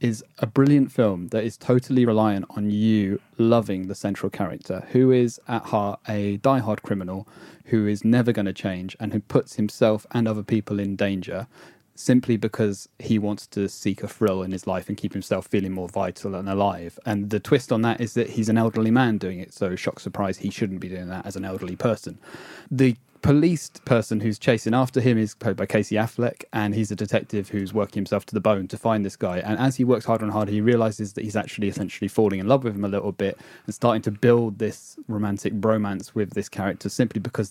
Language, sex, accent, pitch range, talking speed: English, male, British, 100-120 Hz, 220 wpm